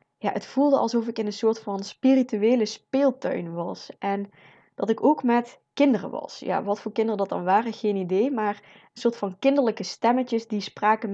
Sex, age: female, 20-39